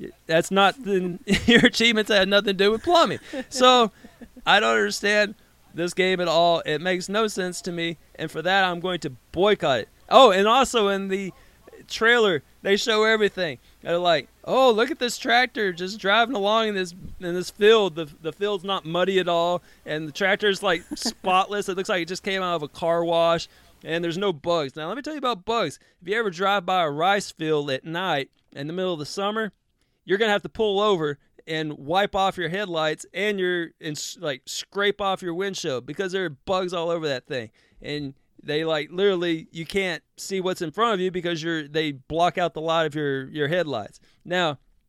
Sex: male